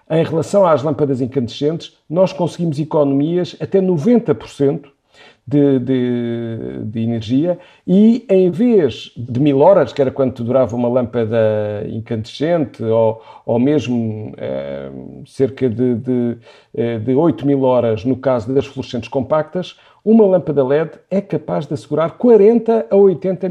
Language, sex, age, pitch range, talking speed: Portuguese, male, 50-69, 120-160 Hz, 135 wpm